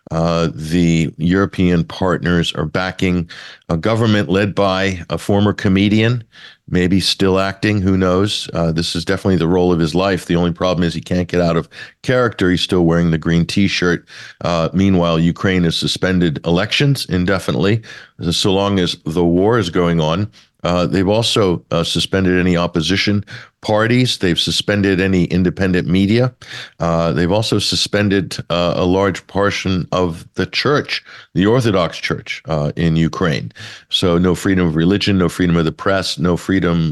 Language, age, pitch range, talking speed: English, 50-69, 85-100 Hz, 160 wpm